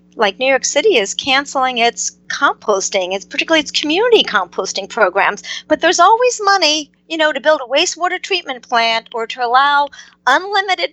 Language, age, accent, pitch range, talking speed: English, 50-69, American, 210-285 Hz, 165 wpm